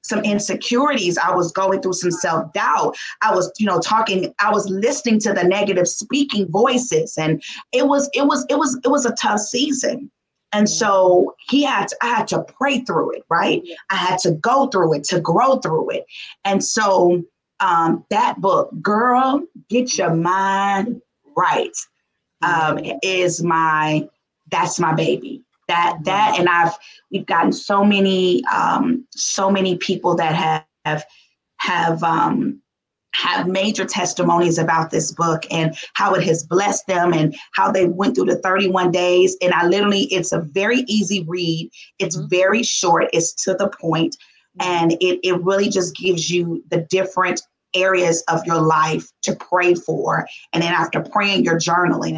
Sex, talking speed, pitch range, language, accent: female, 165 wpm, 175-220 Hz, English, American